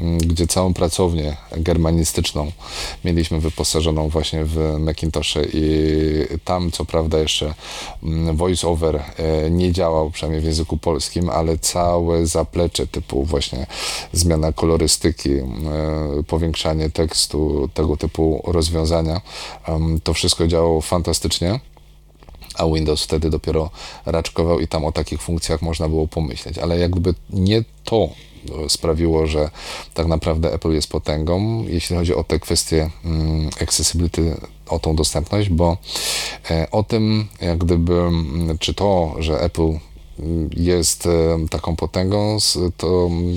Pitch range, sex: 80-90 Hz, male